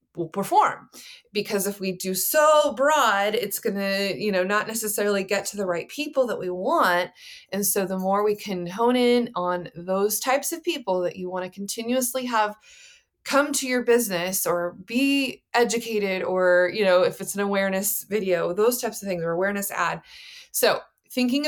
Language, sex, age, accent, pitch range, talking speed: English, female, 20-39, American, 185-245 Hz, 180 wpm